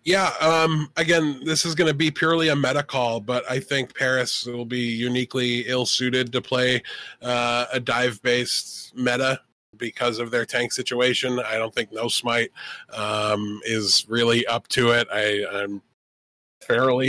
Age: 20-39